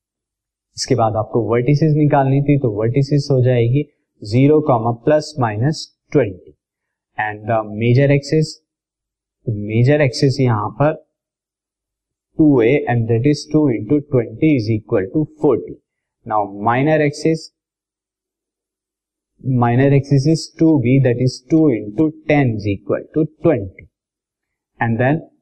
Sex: male